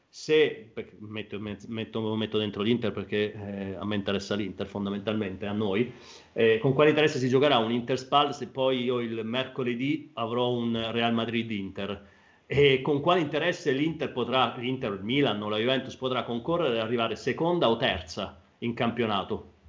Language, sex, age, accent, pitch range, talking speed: Italian, male, 40-59, native, 115-145 Hz, 165 wpm